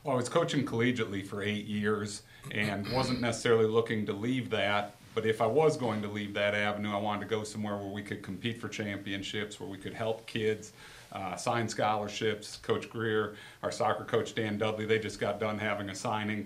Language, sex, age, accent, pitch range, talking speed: English, male, 40-59, American, 105-120 Hz, 210 wpm